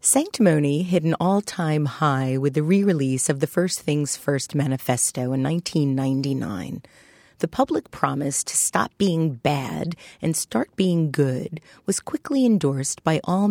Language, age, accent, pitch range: English, 40-59, American, 140-175 Hz